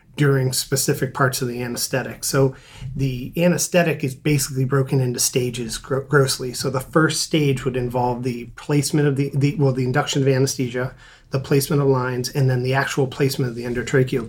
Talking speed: 180 wpm